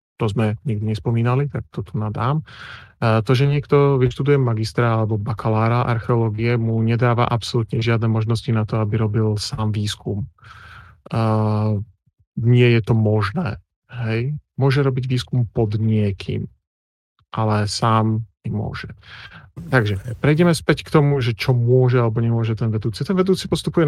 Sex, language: male, Slovak